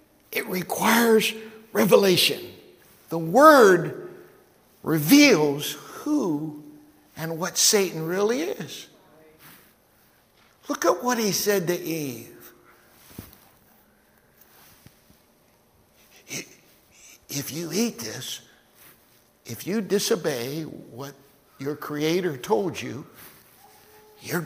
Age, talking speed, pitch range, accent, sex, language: 60-79, 80 wpm, 150-235 Hz, American, male, English